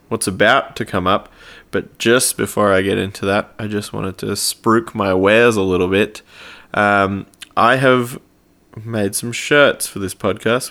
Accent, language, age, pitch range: Australian, English, 20-39, 100-115 Hz